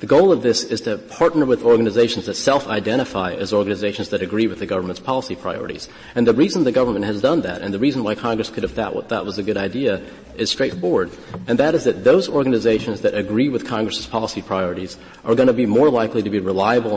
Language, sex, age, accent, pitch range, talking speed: English, male, 40-59, American, 100-115 Hz, 225 wpm